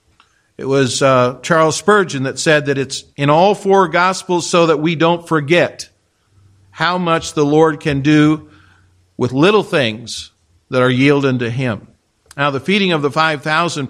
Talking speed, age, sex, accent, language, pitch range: 165 wpm, 50-69, male, American, English, 140-180 Hz